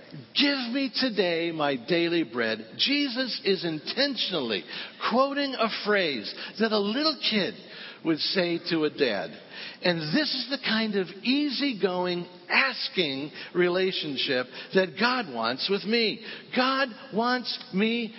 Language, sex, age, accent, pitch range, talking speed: English, male, 60-79, American, 185-245 Hz, 125 wpm